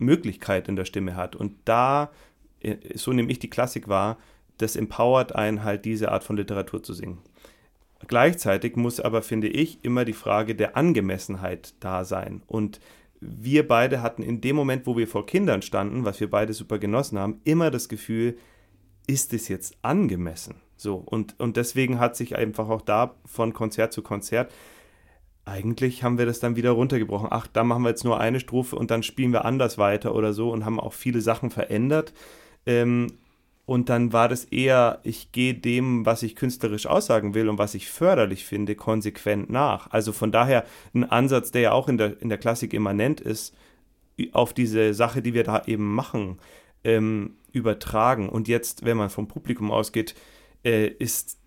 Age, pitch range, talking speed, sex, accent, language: 40-59, 105-120 Hz, 180 wpm, male, German, German